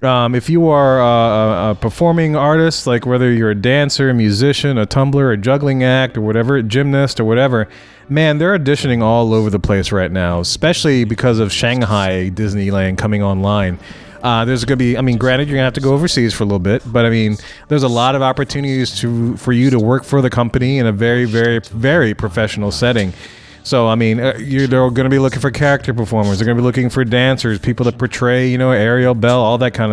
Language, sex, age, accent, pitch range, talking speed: English, male, 30-49, American, 110-135 Hz, 225 wpm